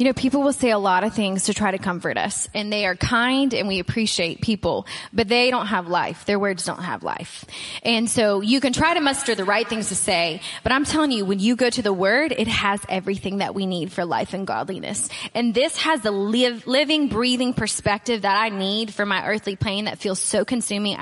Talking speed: 235 wpm